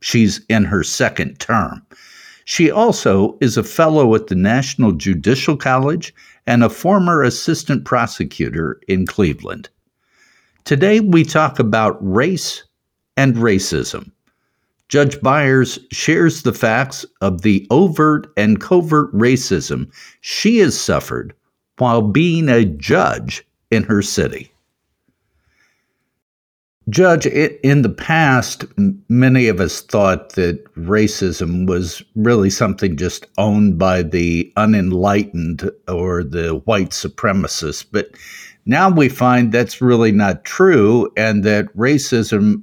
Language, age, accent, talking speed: English, 60-79, American, 115 wpm